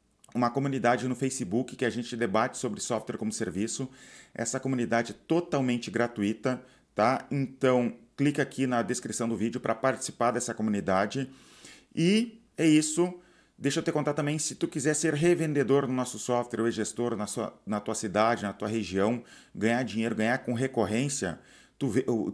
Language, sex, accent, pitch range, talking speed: Portuguese, male, Brazilian, 115-135 Hz, 160 wpm